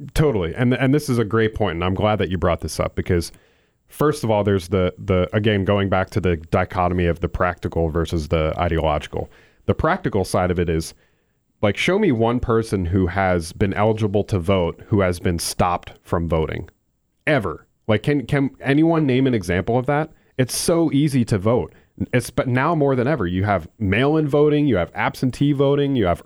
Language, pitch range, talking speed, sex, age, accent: English, 95-130 Hz, 205 wpm, male, 30-49, American